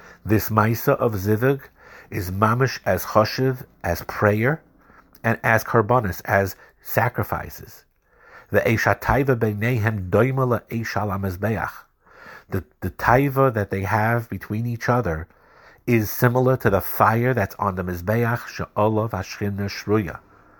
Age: 50-69